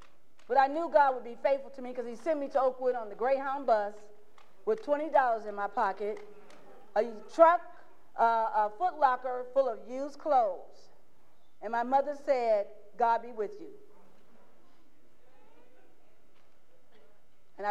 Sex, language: female, English